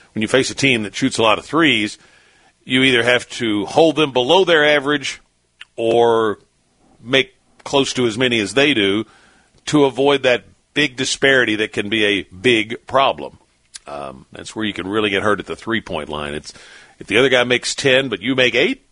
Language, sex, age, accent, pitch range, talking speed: English, male, 50-69, American, 105-135 Hz, 200 wpm